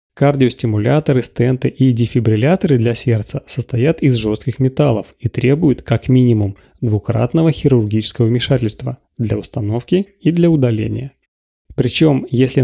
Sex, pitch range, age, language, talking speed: male, 115-140 Hz, 30-49, Russian, 115 wpm